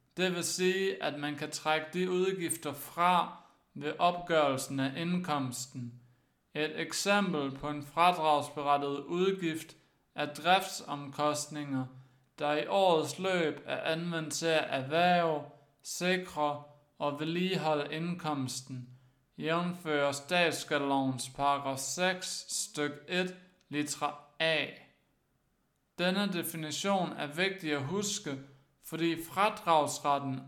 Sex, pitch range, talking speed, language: male, 140-175 Hz, 95 wpm, Danish